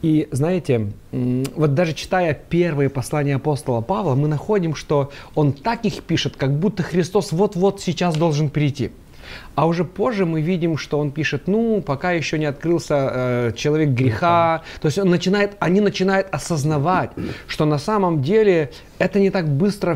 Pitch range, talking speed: 140-185 Hz, 160 wpm